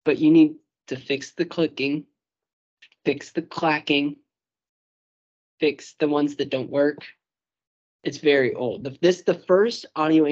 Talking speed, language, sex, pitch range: 135 wpm, English, male, 125-155 Hz